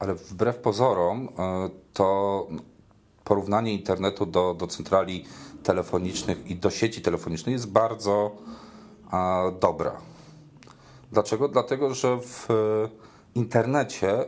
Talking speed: 95 wpm